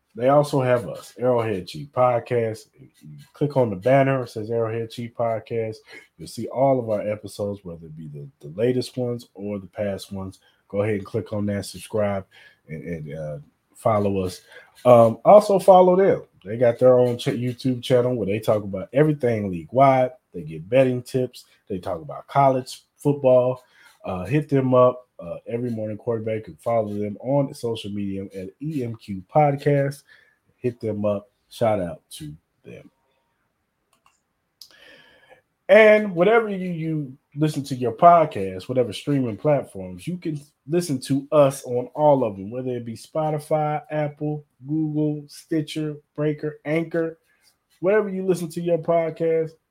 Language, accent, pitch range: English, American, 105-150 Hz